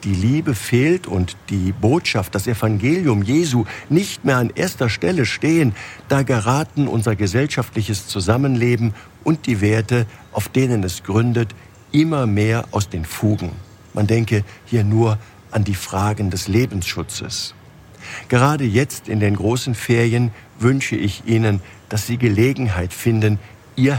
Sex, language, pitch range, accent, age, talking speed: male, German, 100-125 Hz, German, 50-69, 140 wpm